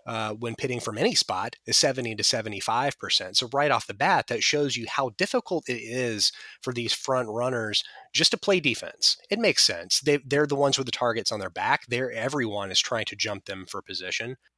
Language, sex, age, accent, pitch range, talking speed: English, male, 30-49, American, 115-140 Hz, 215 wpm